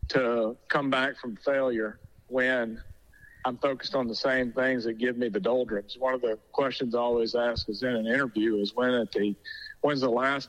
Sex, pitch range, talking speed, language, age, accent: male, 115-135 Hz, 200 wpm, English, 40-59, American